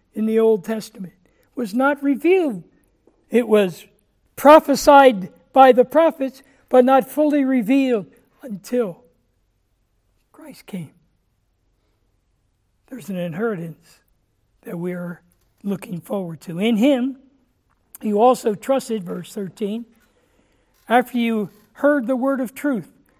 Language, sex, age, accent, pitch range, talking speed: English, male, 60-79, American, 175-255 Hz, 110 wpm